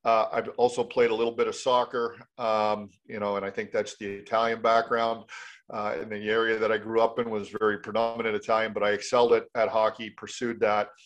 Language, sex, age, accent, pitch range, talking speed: English, male, 40-59, American, 105-115 Hz, 215 wpm